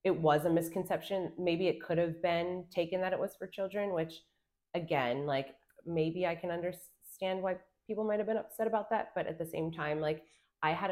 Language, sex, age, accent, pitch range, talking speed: English, female, 30-49, American, 160-195 Hz, 205 wpm